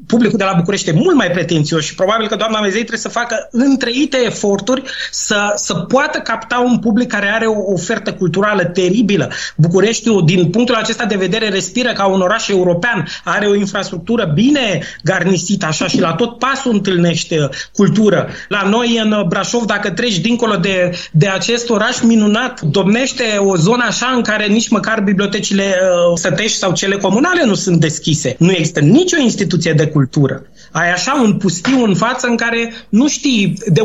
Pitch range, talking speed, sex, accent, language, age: 180-230 Hz, 175 wpm, male, native, Romanian, 20-39